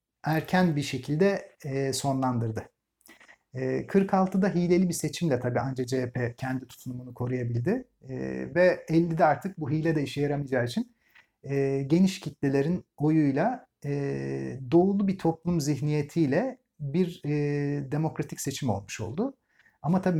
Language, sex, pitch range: Turkish, male, 130-175 Hz